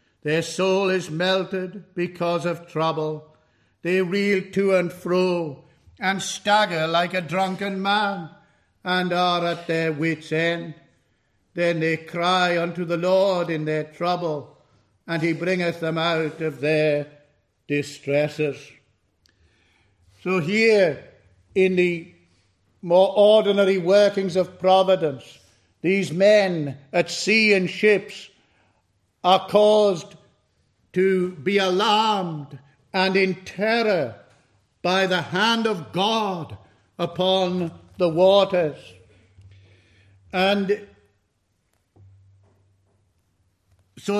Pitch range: 145-195 Hz